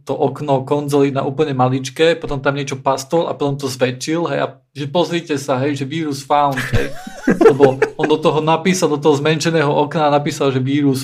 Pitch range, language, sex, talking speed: 130-145 Hz, Slovak, male, 185 wpm